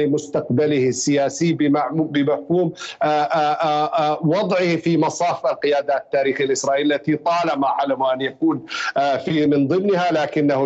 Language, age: Arabic, 50-69